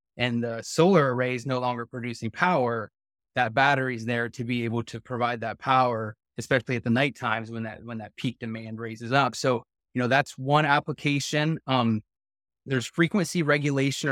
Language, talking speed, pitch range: English, 185 wpm, 120-145 Hz